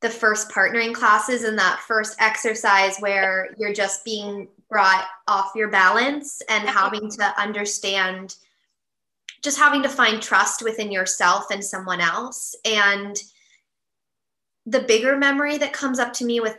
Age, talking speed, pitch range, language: 20-39, 145 wpm, 195-230 Hz, English